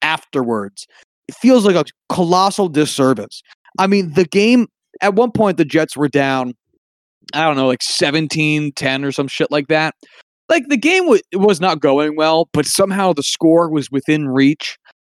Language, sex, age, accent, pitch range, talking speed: English, male, 20-39, American, 150-200 Hz, 170 wpm